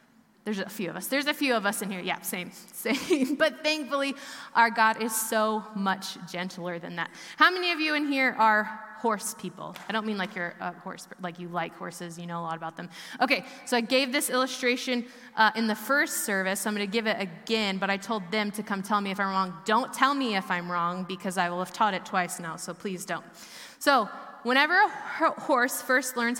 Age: 20-39